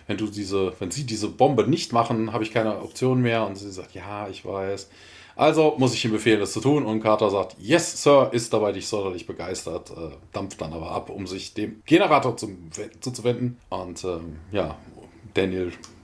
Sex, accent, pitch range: male, German, 95-125 Hz